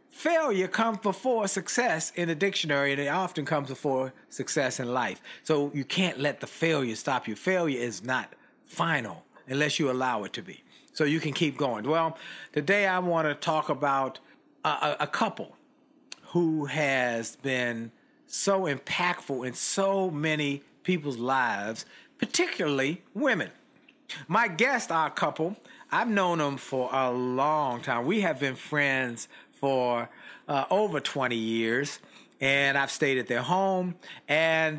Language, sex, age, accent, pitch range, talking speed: English, male, 50-69, American, 135-185 Hz, 155 wpm